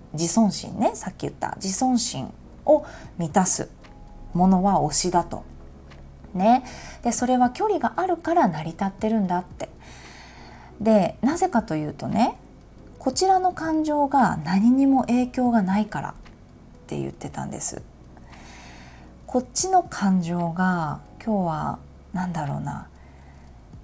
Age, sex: 20-39, female